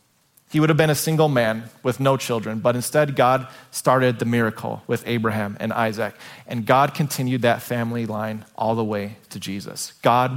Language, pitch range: English, 120-160 Hz